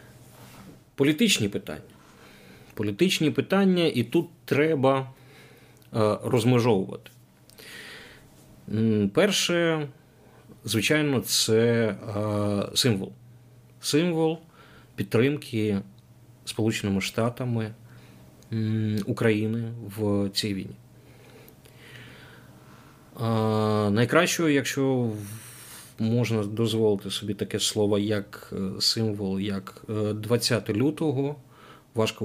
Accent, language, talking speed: native, Ukrainian, 60 wpm